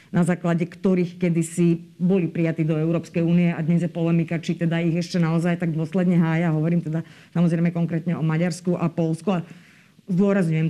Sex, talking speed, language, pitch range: female, 170 wpm, Slovak, 170-195 Hz